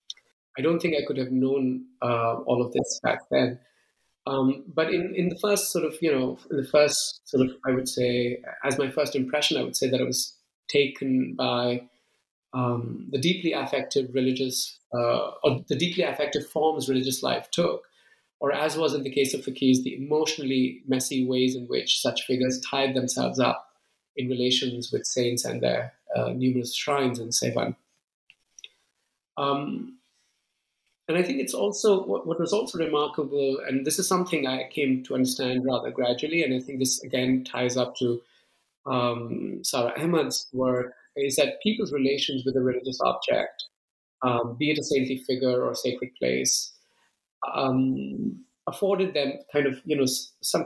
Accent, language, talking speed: Indian, English, 170 wpm